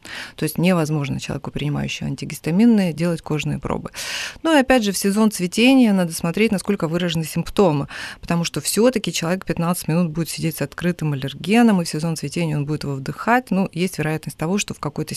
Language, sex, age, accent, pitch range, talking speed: Ukrainian, female, 30-49, native, 150-190 Hz, 185 wpm